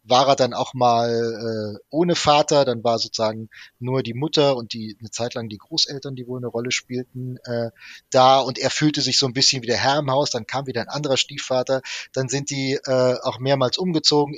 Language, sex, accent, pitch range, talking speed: German, male, German, 115-140 Hz, 220 wpm